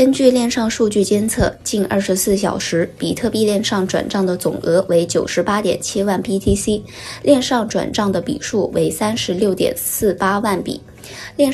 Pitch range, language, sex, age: 185-220 Hz, Chinese, female, 10-29